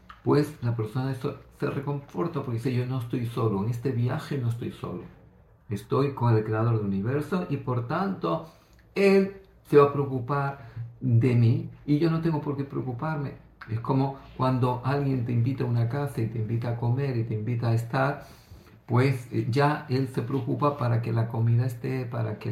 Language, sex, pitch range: Greek, male, 115-140 Hz